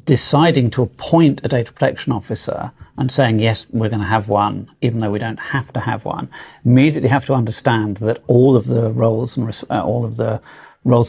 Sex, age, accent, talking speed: male, 50-69, British, 210 wpm